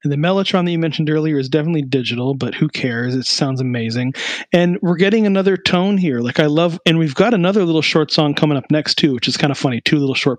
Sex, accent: male, American